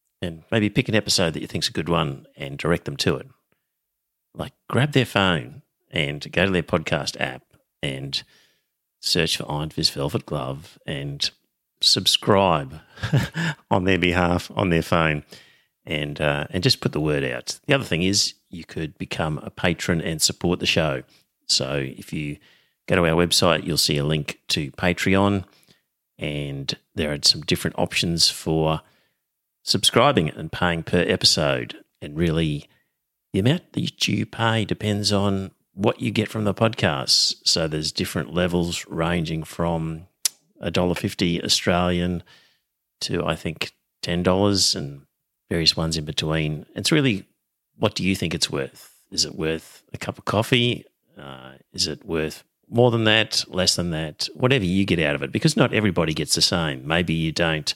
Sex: male